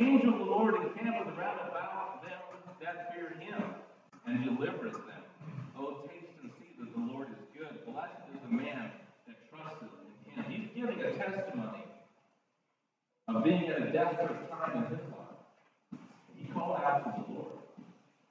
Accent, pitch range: American, 175-245 Hz